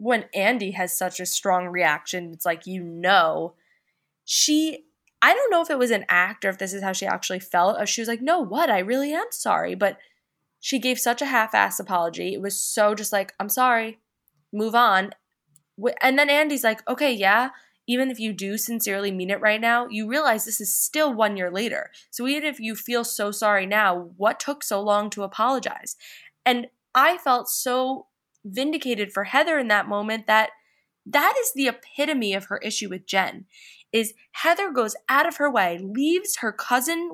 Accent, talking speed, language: American, 195 wpm, English